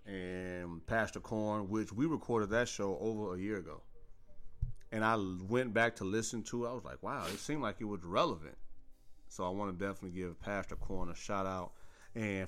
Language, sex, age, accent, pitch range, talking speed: English, male, 30-49, American, 95-115 Hz, 200 wpm